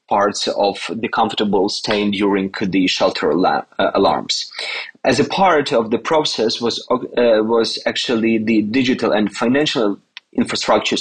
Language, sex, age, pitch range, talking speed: Ukrainian, male, 30-49, 110-140 Hz, 125 wpm